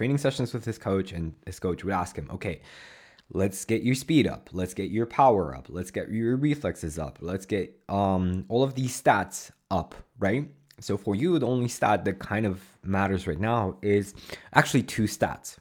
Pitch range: 90-120 Hz